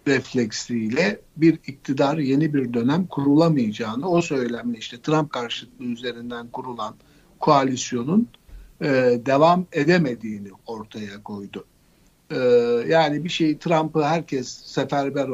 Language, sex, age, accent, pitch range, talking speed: Turkish, male, 60-79, native, 120-160 Hz, 105 wpm